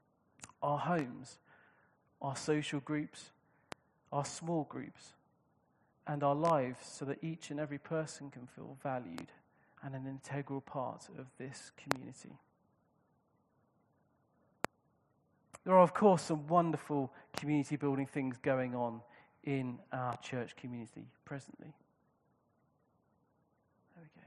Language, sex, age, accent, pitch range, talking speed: English, male, 40-59, British, 140-160 Hz, 105 wpm